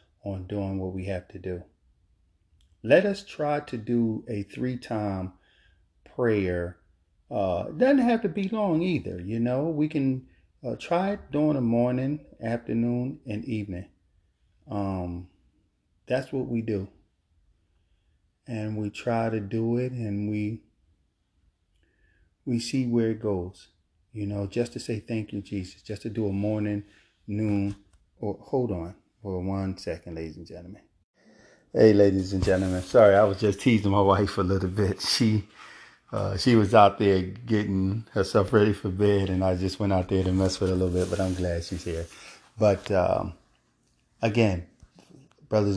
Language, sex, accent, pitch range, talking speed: English, male, American, 90-110 Hz, 165 wpm